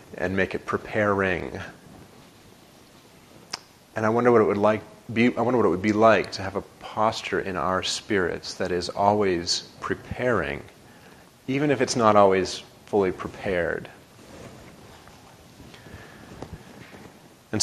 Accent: American